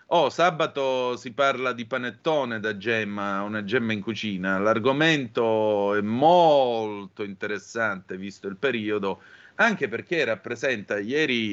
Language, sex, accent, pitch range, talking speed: Italian, male, native, 105-135 Hz, 120 wpm